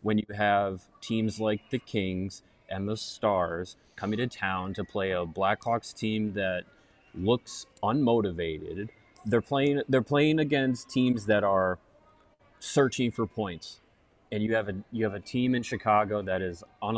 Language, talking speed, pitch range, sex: English, 160 wpm, 95-115 Hz, male